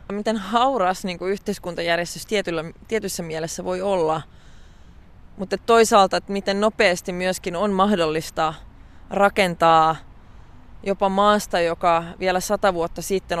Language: Finnish